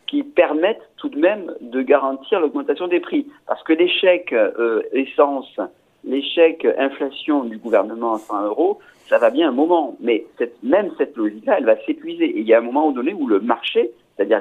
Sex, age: male, 50-69